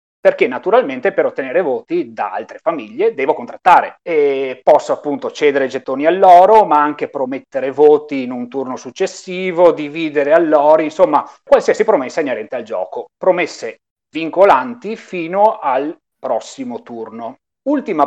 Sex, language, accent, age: male, Italian, native, 30-49